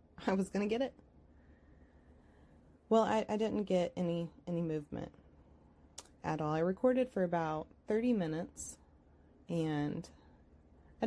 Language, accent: English, American